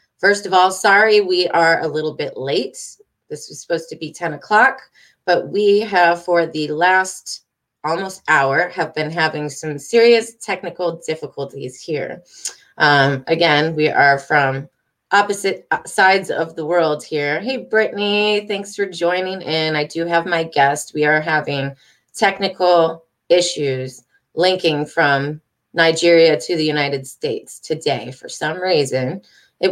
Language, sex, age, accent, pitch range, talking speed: English, female, 30-49, American, 155-200 Hz, 145 wpm